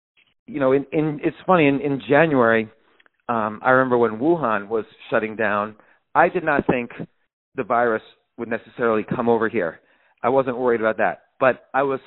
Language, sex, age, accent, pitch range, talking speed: English, male, 40-59, American, 120-155 Hz, 170 wpm